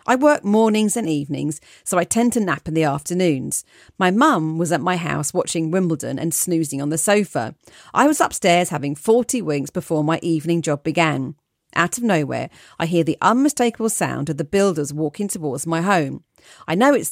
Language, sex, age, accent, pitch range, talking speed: English, female, 40-59, British, 160-215 Hz, 195 wpm